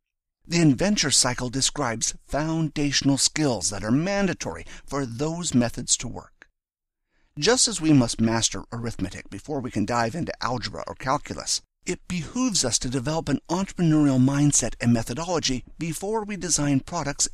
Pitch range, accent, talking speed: 115-160 Hz, American, 145 wpm